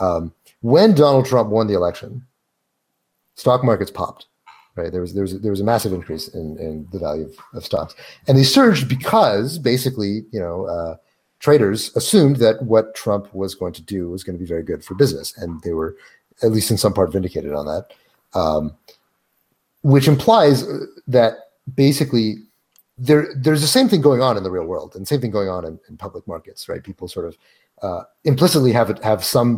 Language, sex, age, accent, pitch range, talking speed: English, male, 30-49, American, 100-140 Hz, 195 wpm